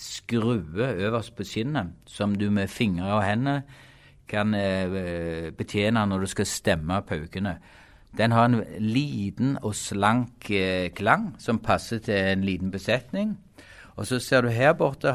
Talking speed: 145 wpm